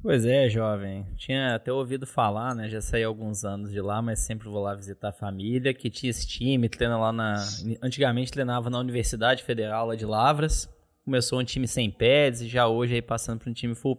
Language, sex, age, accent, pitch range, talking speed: Portuguese, male, 20-39, Brazilian, 115-150 Hz, 220 wpm